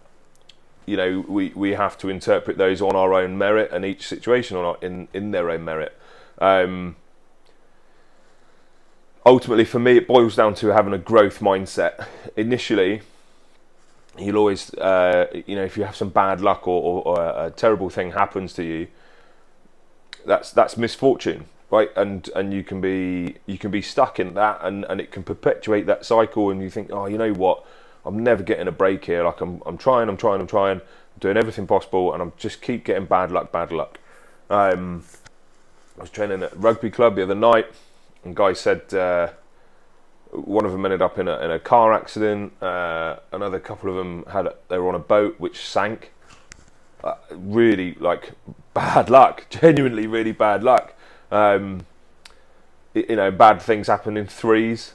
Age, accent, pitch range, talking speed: 30-49, British, 90-110 Hz, 185 wpm